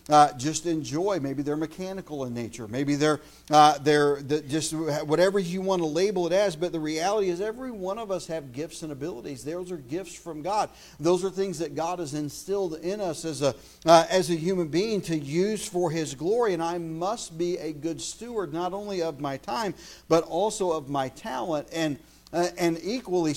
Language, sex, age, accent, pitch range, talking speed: English, male, 50-69, American, 150-180 Hz, 205 wpm